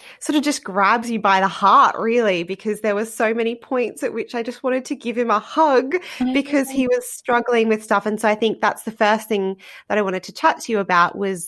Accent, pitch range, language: Australian, 180-220 Hz, English